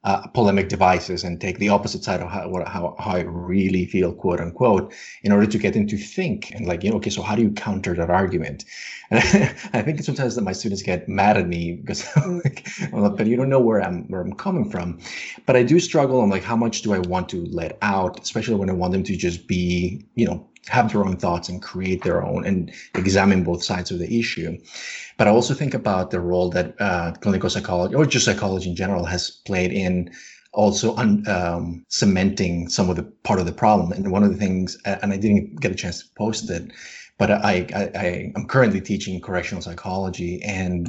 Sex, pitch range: male, 90-105 Hz